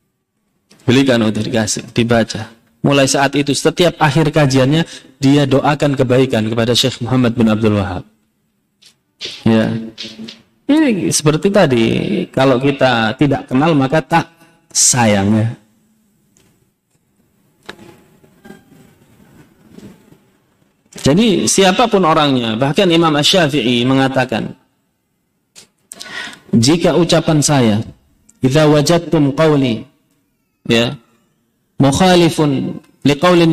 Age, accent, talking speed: 30-49, native, 80 wpm